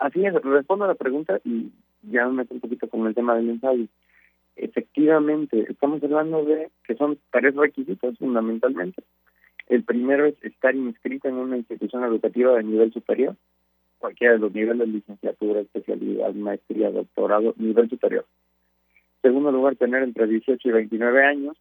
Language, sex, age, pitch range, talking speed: Spanish, male, 40-59, 105-135 Hz, 160 wpm